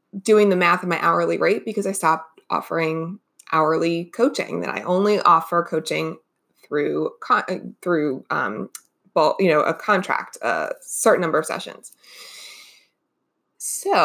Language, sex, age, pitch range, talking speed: English, female, 20-39, 165-205 Hz, 140 wpm